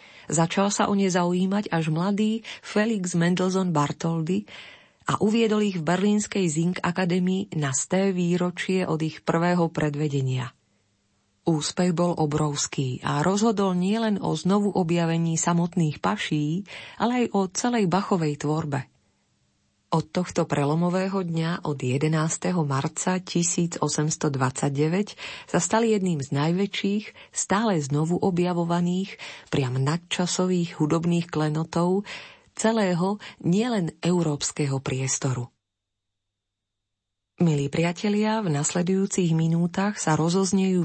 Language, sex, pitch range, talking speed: Slovak, female, 145-190 Hz, 105 wpm